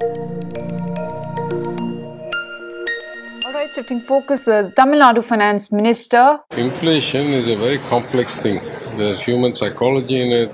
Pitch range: 125-160 Hz